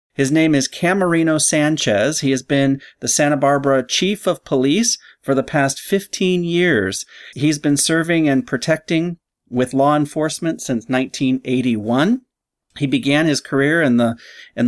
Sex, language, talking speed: male, English, 145 wpm